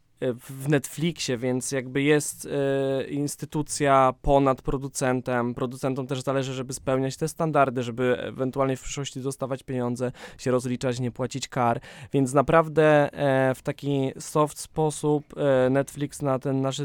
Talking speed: 140 wpm